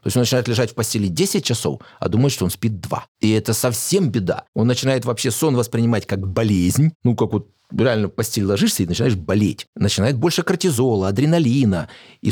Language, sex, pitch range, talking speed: Russian, male, 115-165 Hz, 200 wpm